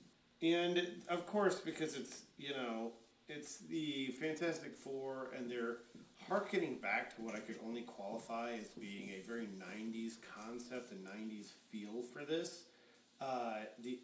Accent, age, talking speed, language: American, 40-59, 145 wpm, English